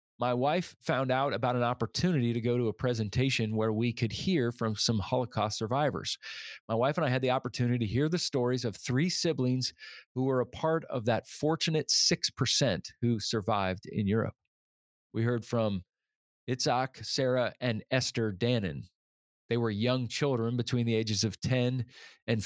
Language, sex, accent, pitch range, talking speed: English, male, American, 110-135 Hz, 170 wpm